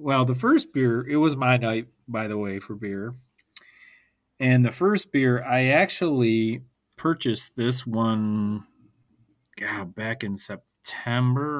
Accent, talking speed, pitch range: American, 135 wpm, 100-125 Hz